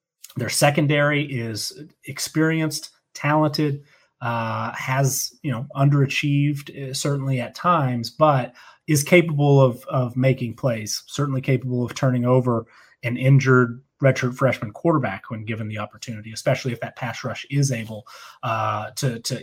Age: 30-49